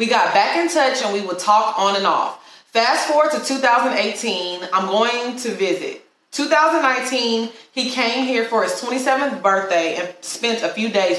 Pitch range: 180-230 Hz